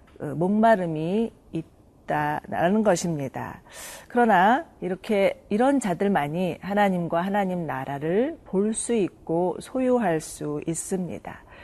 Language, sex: Korean, female